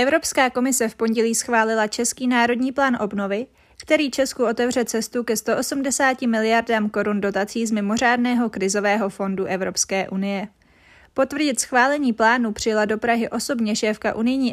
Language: Czech